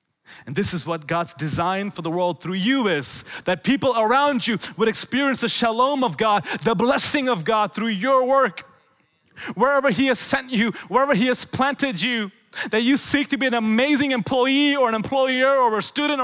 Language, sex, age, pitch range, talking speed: English, male, 30-49, 220-270 Hz, 195 wpm